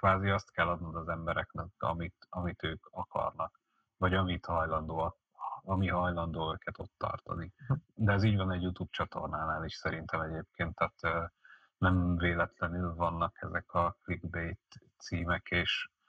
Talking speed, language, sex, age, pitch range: 140 wpm, Hungarian, male, 30-49, 85-90 Hz